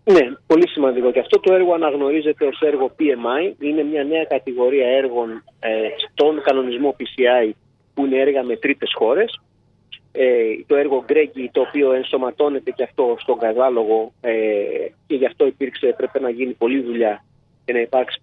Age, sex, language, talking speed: 30-49, male, Greek, 165 wpm